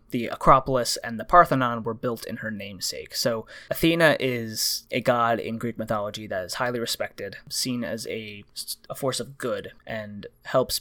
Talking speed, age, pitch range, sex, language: 170 wpm, 20-39, 110-135 Hz, male, English